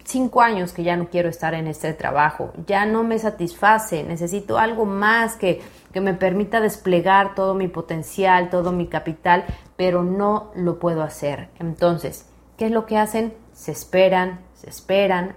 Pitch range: 165-205 Hz